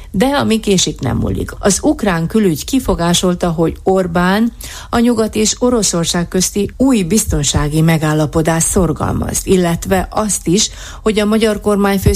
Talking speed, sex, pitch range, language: 135 wpm, female, 150-200 Hz, Hungarian